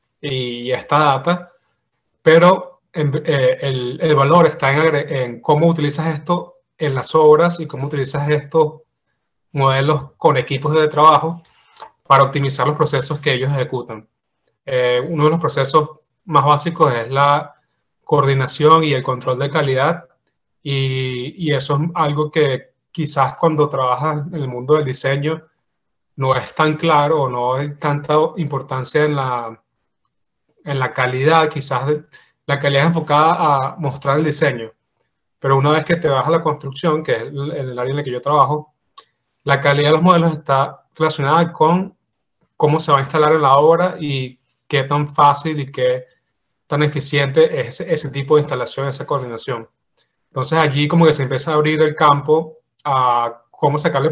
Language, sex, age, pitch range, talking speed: Spanish, male, 30-49, 135-155 Hz, 165 wpm